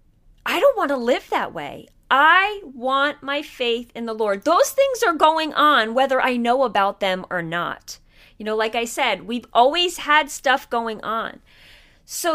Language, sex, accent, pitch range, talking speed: English, female, American, 210-300 Hz, 185 wpm